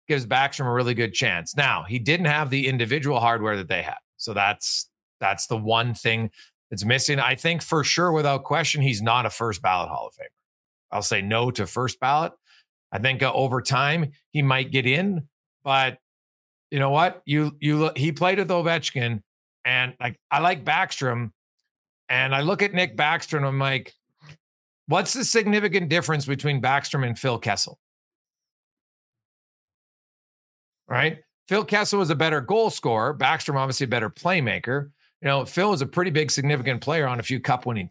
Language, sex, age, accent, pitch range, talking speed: English, male, 40-59, American, 125-160 Hz, 175 wpm